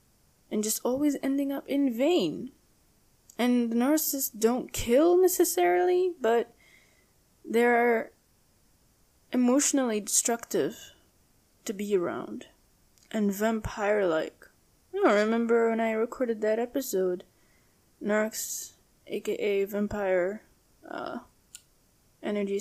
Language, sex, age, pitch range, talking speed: English, female, 10-29, 200-240 Hz, 90 wpm